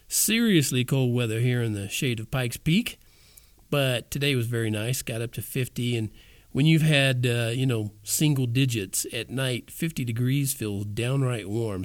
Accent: American